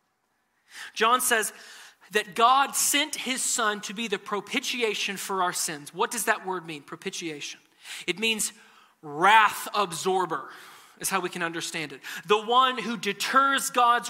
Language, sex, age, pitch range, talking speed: English, male, 30-49, 205-250 Hz, 150 wpm